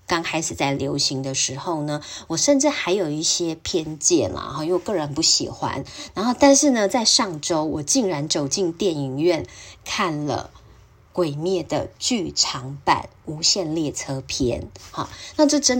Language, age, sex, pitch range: Chinese, 20-39, female, 150-220 Hz